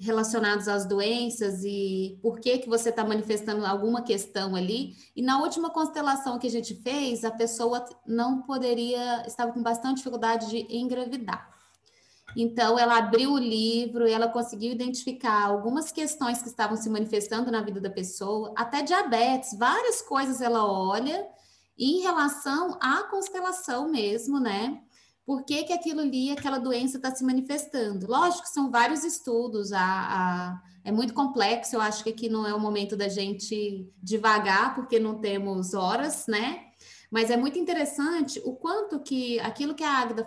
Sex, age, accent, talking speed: female, 20-39, Brazilian, 160 wpm